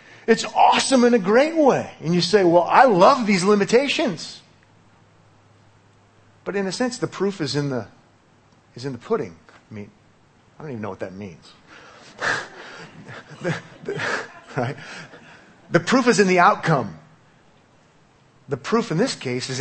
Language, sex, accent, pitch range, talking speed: English, male, American, 110-170 Hz, 155 wpm